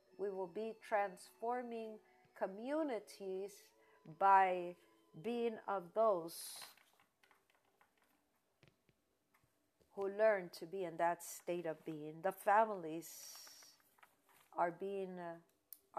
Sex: female